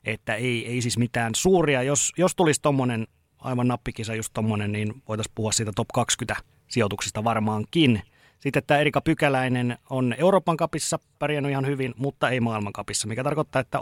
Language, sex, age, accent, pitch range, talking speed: Finnish, male, 30-49, native, 115-140 Hz, 165 wpm